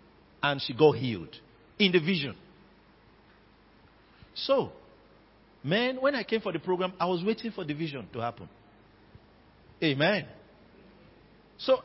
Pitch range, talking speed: 150-225 Hz, 125 wpm